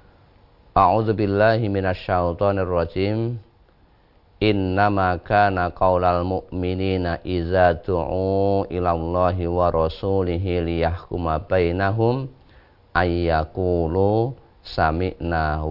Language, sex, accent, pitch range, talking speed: Indonesian, male, native, 90-105 Hz, 60 wpm